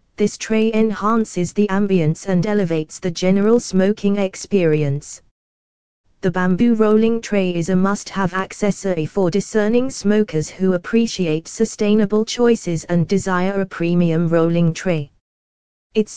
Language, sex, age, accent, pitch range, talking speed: English, female, 20-39, British, 165-210 Hz, 125 wpm